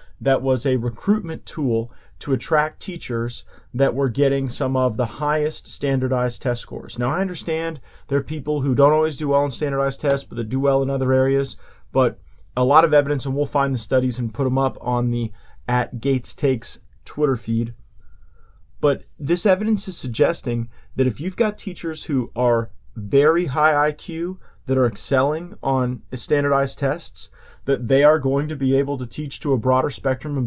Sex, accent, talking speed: male, American, 185 wpm